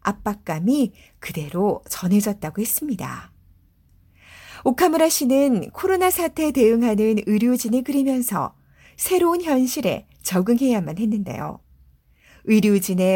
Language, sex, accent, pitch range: Korean, female, native, 175-255 Hz